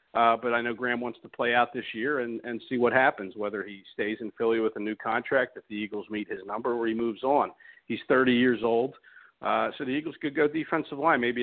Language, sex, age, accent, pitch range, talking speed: English, male, 50-69, American, 110-130 Hz, 250 wpm